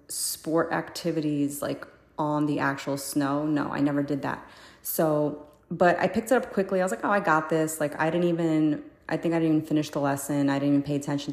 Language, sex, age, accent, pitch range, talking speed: English, female, 30-49, American, 145-165 Hz, 230 wpm